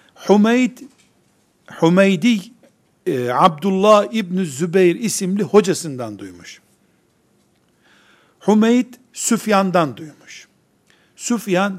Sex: male